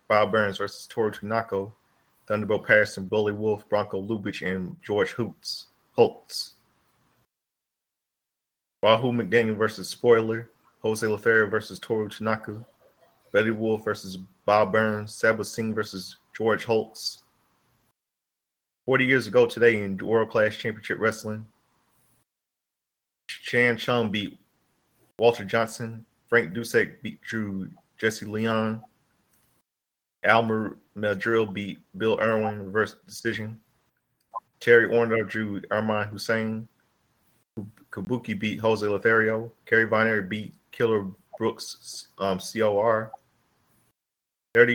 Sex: male